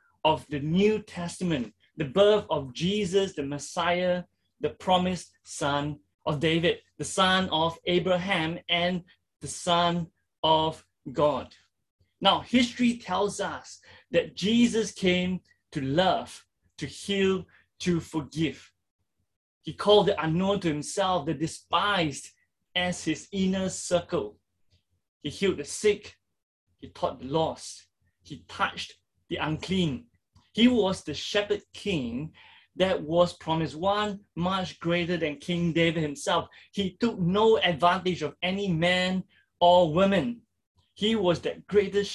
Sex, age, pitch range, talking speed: male, 20-39, 155-195 Hz, 125 wpm